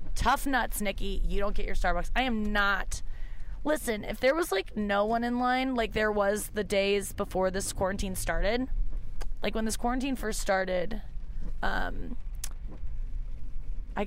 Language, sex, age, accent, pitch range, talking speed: English, female, 20-39, American, 180-240 Hz, 160 wpm